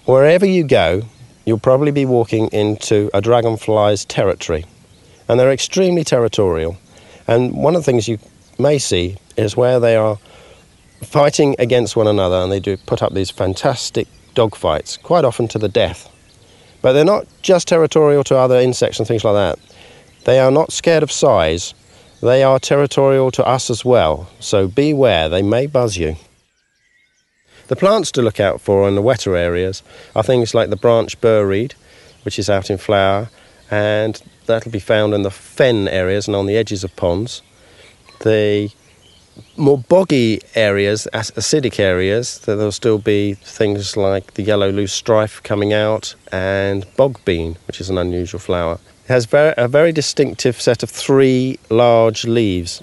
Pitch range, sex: 100-125 Hz, male